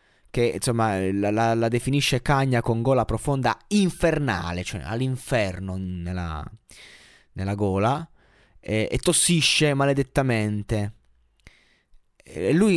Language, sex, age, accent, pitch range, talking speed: Italian, male, 20-39, native, 110-150 Hz, 105 wpm